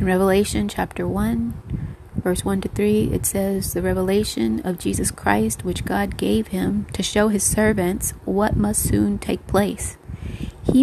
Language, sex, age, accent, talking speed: English, female, 30-49, American, 160 wpm